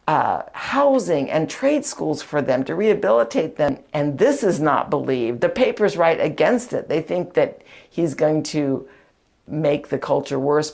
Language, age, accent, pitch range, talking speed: English, 60-79, American, 150-220 Hz, 170 wpm